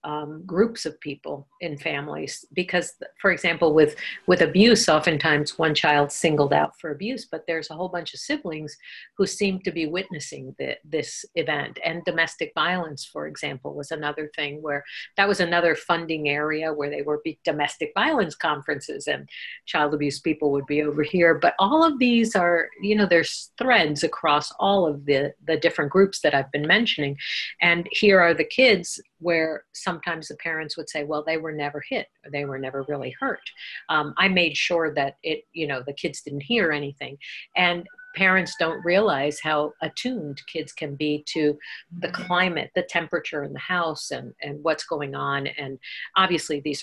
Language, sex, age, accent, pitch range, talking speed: English, female, 50-69, American, 150-180 Hz, 185 wpm